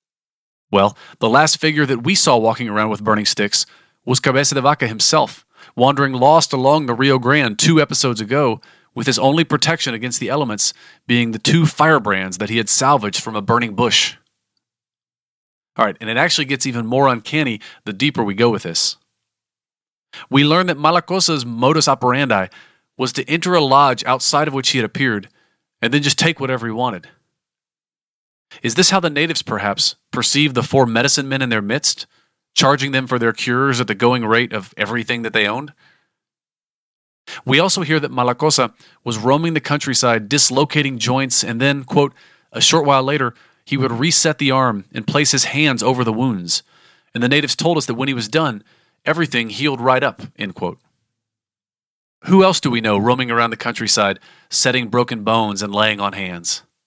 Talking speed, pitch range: 185 wpm, 115-145 Hz